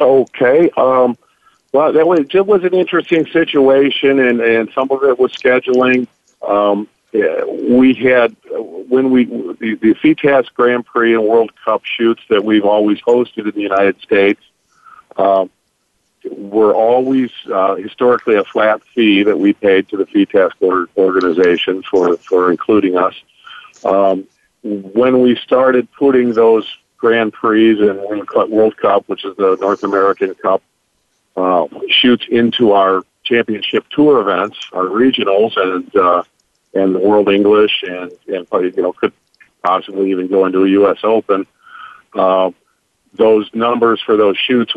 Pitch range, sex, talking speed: 100-125 Hz, male, 145 wpm